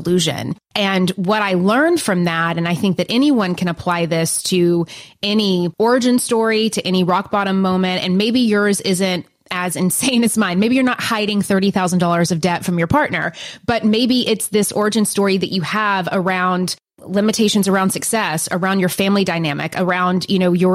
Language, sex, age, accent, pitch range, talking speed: English, female, 20-39, American, 175-210 Hz, 180 wpm